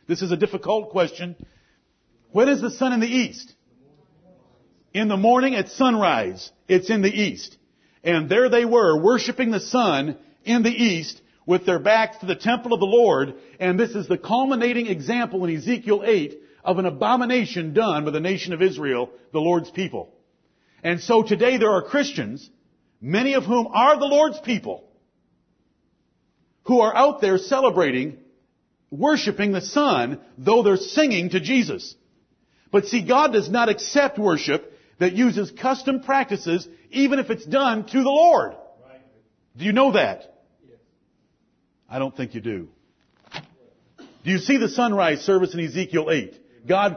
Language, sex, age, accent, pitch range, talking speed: English, male, 50-69, American, 170-240 Hz, 160 wpm